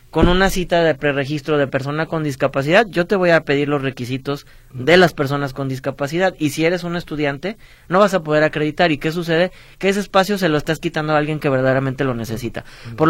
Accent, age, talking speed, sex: Mexican, 30-49, 220 wpm, male